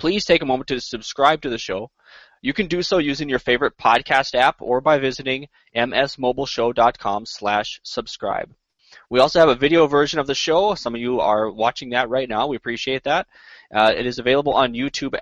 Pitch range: 115-145 Hz